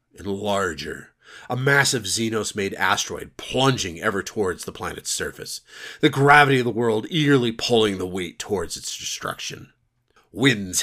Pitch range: 105-140 Hz